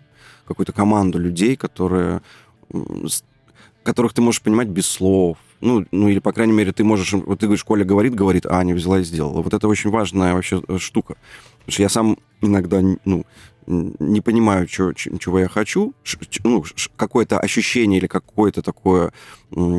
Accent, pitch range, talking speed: native, 85-105 Hz, 165 wpm